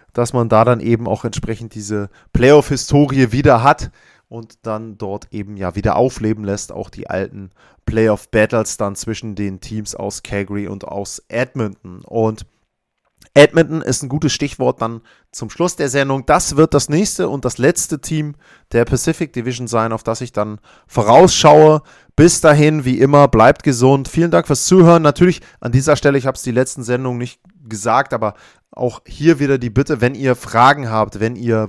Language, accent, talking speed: German, German, 180 wpm